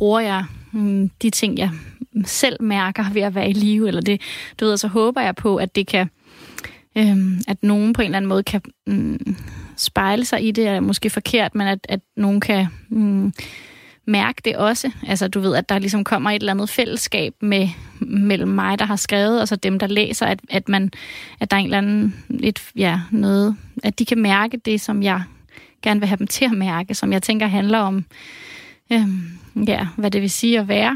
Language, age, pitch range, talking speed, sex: Danish, 20-39, 195-225 Hz, 215 wpm, female